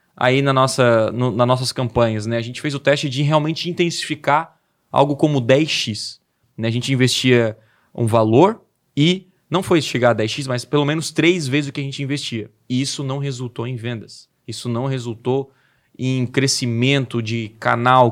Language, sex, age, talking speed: Portuguese, male, 20-39, 170 wpm